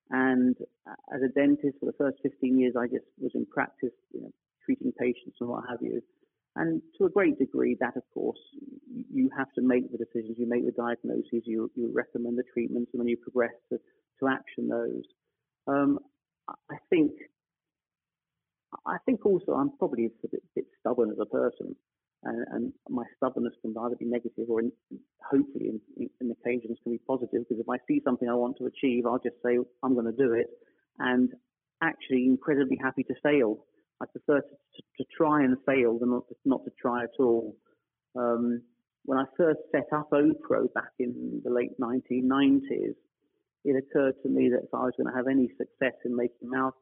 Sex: male